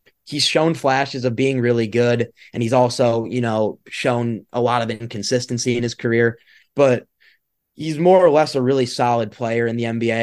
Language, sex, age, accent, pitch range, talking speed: English, male, 20-39, American, 115-140 Hz, 190 wpm